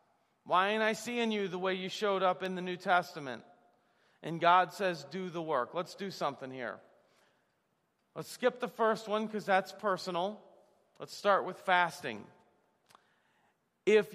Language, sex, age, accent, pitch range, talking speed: English, male, 40-59, American, 185-235 Hz, 155 wpm